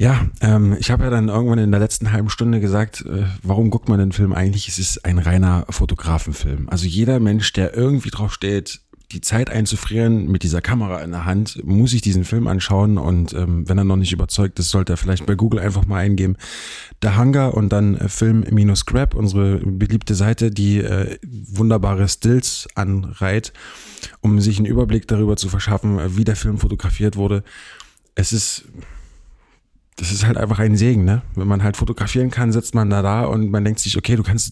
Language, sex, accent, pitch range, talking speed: German, male, German, 95-115 Hz, 195 wpm